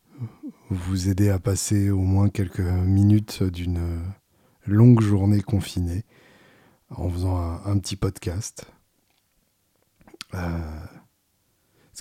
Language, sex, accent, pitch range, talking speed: French, male, French, 90-105 Hz, 100 wpm